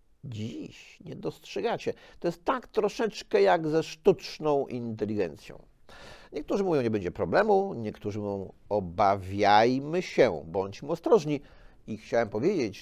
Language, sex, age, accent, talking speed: Polish, male, 50-69, native, 120 wpm